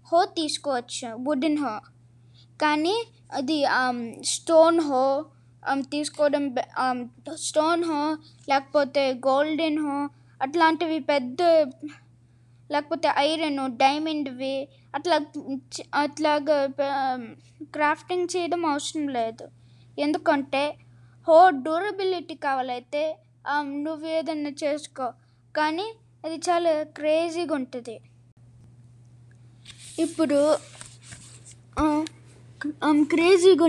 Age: 20-39